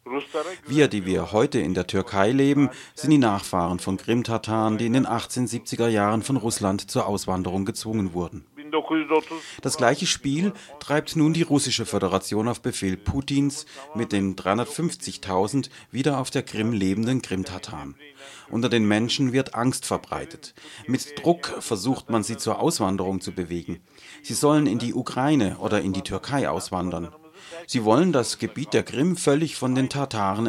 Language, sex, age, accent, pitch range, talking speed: German, male, 40-59, German, 95-140 Hz, 155 wpm